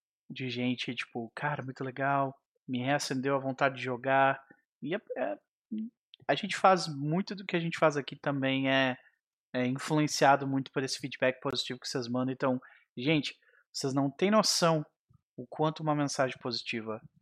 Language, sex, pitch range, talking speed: Portuguese, male, 120-155 Hz, 165 wpm